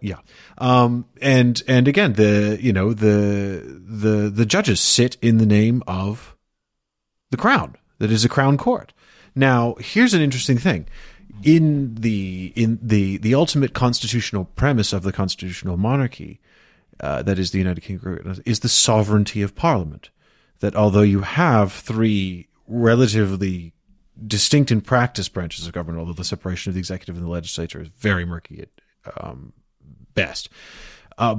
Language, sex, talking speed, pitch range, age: English, male, 150 wpm, 95-120 Hz, 30-49